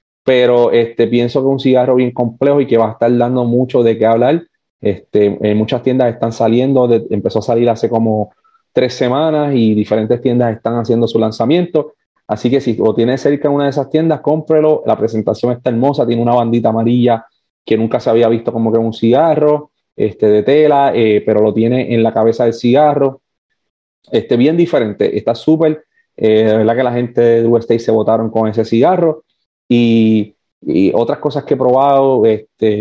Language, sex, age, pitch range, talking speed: English, male, 30-49, 115-140 Hz, 195 wpm